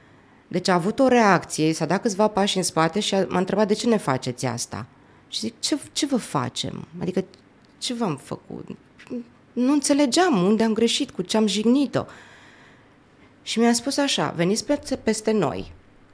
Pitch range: 165-245 Hz